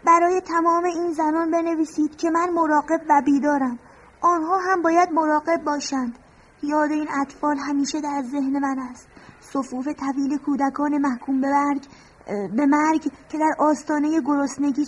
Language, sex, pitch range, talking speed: Persian, female, 290-335 Hz, 140 wpm